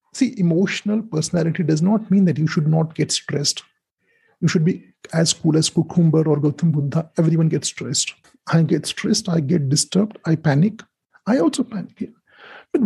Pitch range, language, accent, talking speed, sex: 160-200 Hz, English, Indian, 175 wpm, male